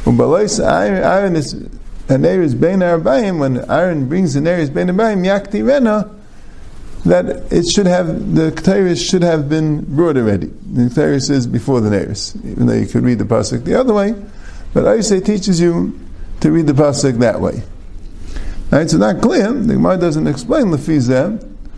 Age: 50-69